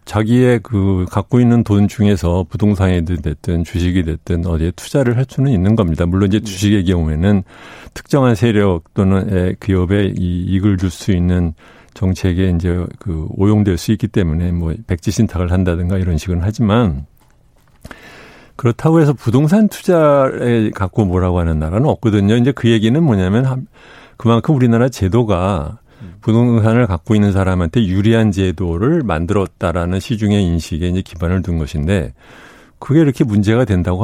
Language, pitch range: Korean, 90-120 Hz